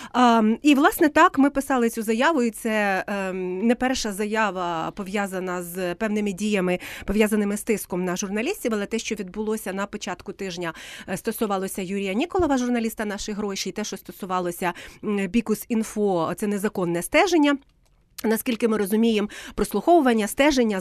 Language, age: Ukrainian, 30-49